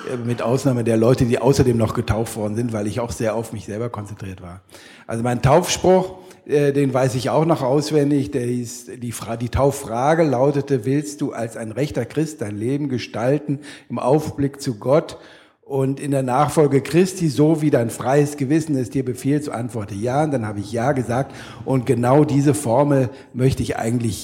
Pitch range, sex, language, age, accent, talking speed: 120-140 Hz, male, German, 50-69, German, 195 wpm